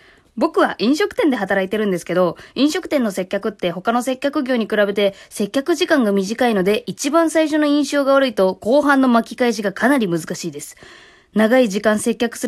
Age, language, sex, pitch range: 20-39, Japanese, female, 190-285 Hz